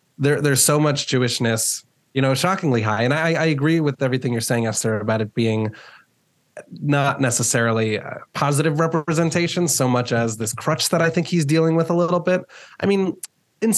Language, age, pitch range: English, 20-39, 115-145 Hz